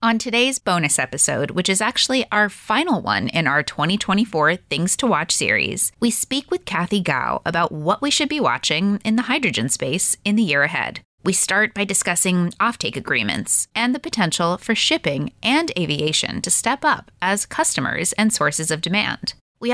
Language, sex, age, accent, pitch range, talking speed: English, female, 30-49, American, 165-245 Hz, 180 wpm